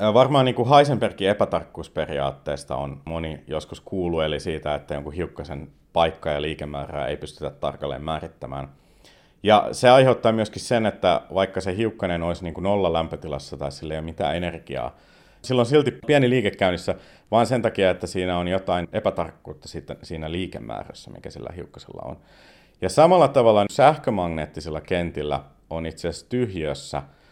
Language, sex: Finnish, male